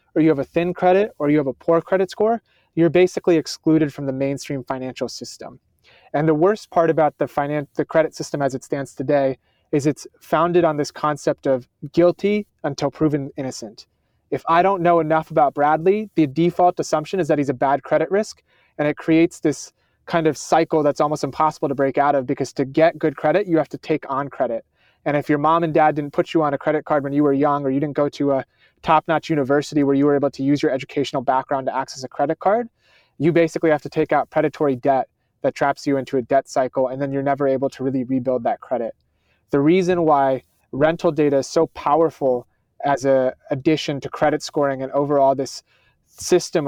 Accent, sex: American, male